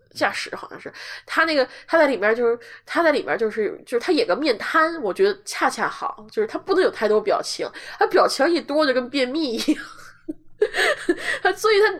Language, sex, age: Chinese, female, 20-39